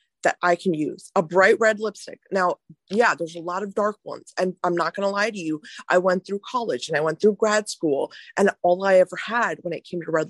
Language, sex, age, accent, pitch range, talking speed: English, female, 20-39, American, 185-245 Hz, 250 wpm